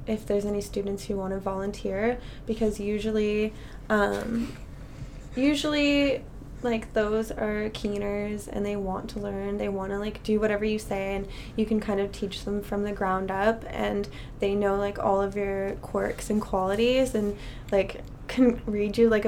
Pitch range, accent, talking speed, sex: 190-220 Hz, American, 175 wpm, female